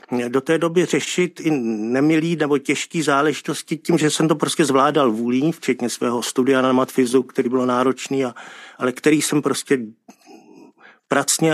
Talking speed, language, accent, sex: 155 wpm, Czech, native, male